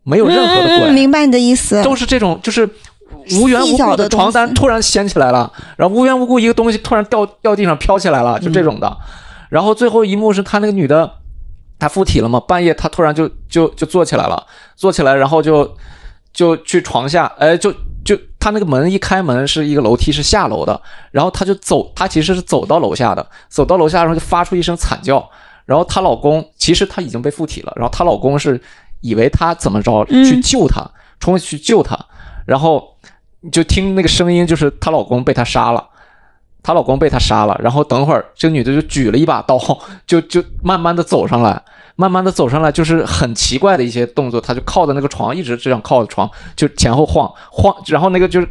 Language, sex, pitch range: Chinese, male, 140-200 Hz